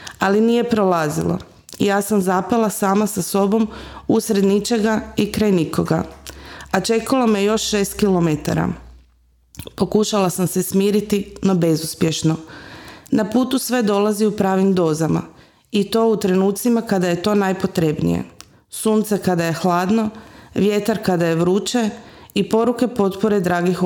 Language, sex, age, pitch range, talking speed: Croatian, female, 30-49, 185-220 Hz, 130 wpm